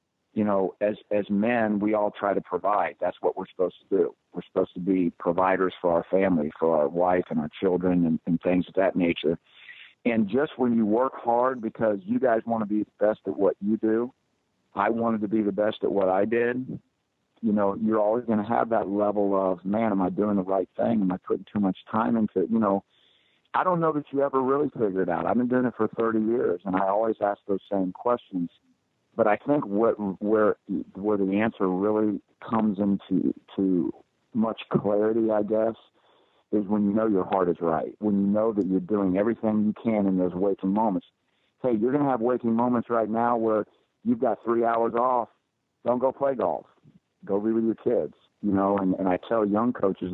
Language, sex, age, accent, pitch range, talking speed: English, male, 50-69, American, 100-115 Hz, 220 wpm